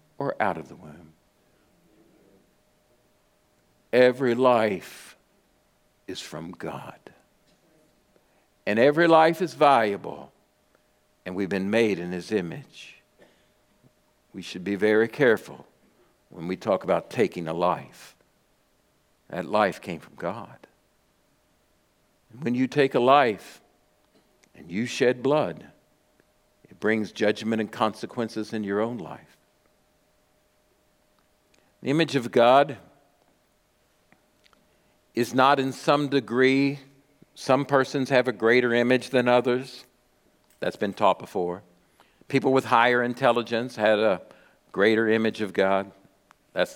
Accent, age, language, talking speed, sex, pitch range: American, 60-79, English, 115 wpm, male, 105-130 Hz